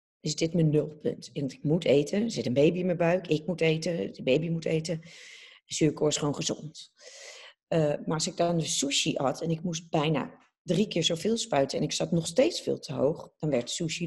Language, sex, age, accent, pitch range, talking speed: Dutch, female, 40-59, Dutch, 145-180 Hz, 220 wpm